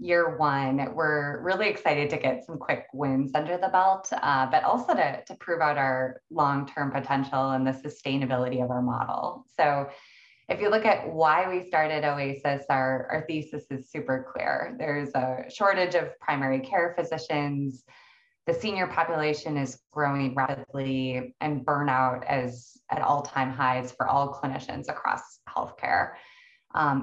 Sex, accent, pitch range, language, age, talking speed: female, American, 130-160 Hz, English, 20-39, 155 wpm